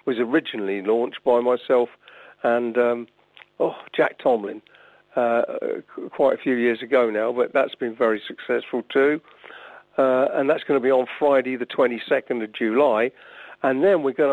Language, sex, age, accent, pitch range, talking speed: English, male, 50-69, British, 115-140 Hz, 160 wpm